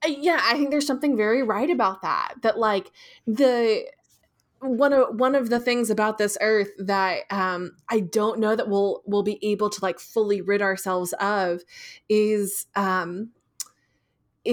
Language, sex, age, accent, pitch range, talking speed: English, female, 20-39, American, 195-230 Hz, 160 wpm